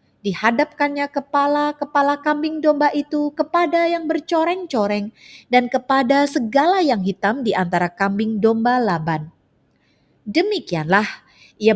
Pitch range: 200-290 Hz